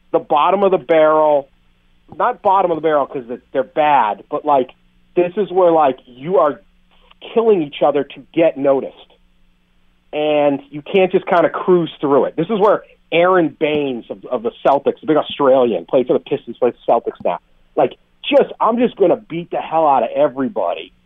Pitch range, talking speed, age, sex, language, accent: 130-195 Hz, 195 wpm, 40-59, male, English, American